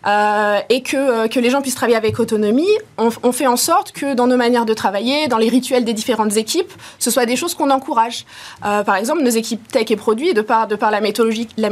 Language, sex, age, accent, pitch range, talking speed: French, female, 20-39, French, 220-260 Hz, 235 wpm